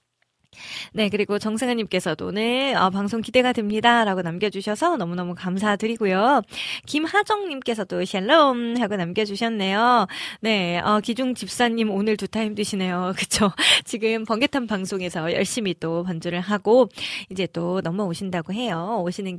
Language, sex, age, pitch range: Korean, female, 20-39, 190-240 Hz